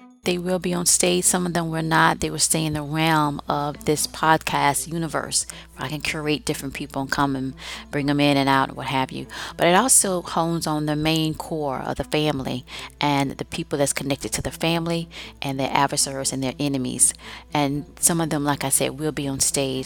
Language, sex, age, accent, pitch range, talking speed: English, female, 30-49, American, 145-170 Hz, 225 wpm